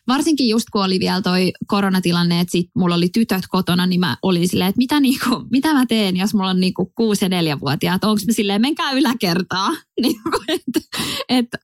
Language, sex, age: Finnish, female, 20-39